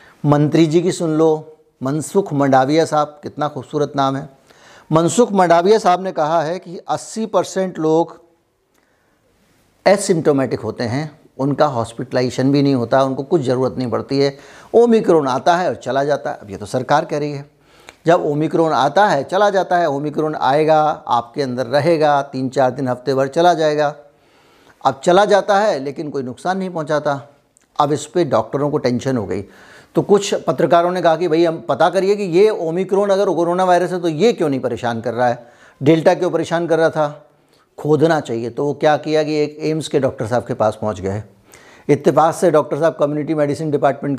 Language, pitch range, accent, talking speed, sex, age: Hindi, 135-170 Hz, native, 190 wpm, male, 60-79